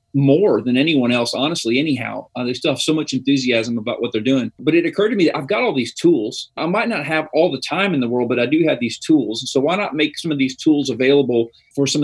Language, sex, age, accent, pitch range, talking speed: English, male, 40-59, American, 130-165 Hz, 275 wpm